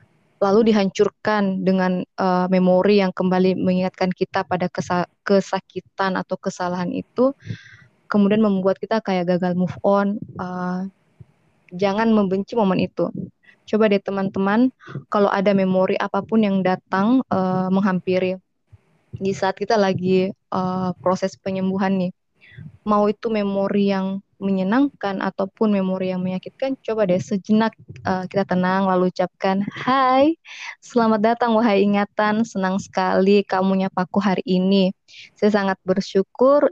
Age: 20-39